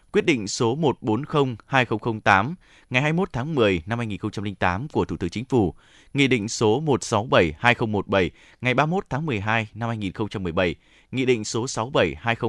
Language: Vietnamese